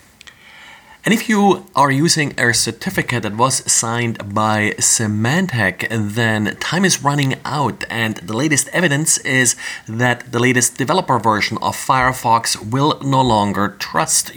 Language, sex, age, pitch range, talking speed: English, male, 30-49, 105-130 Hz, 140 wpm